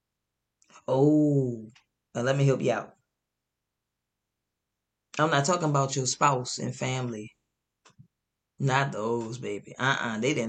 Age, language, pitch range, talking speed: 20-39, English, 130-175 Hz, 110 wpm